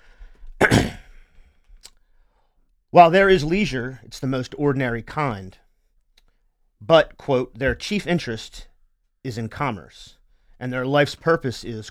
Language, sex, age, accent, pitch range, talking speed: English, male, 40-59, American, 110-140 Hz, 110 wpm